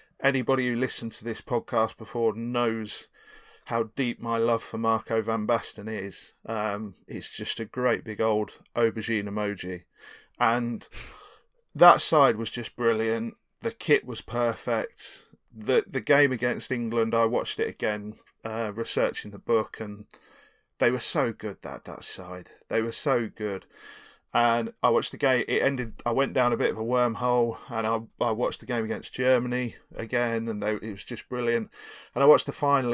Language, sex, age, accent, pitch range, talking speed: English, male, 30-49, British, 110-125 Hz, 175 wpm